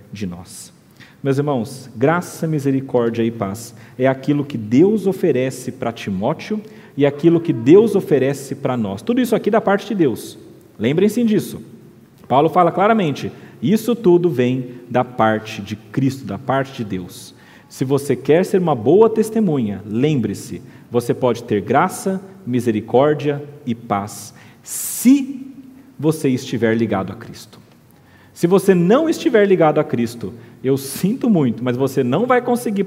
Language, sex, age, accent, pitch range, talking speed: Portuguese, male, 40-59, Brazilian, 120-190 Hz, 150 wpm